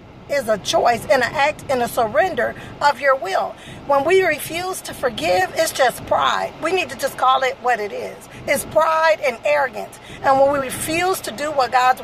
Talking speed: 205 wpm